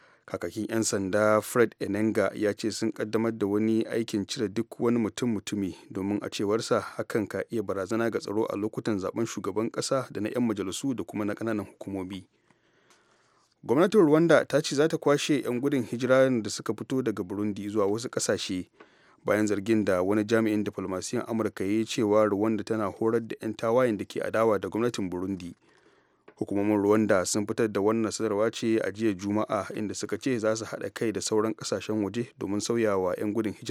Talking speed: 150 wpm